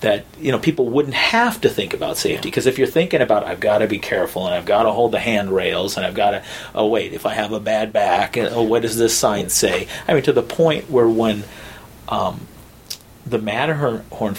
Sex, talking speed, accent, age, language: male, 235 wpm, American, 40-59, English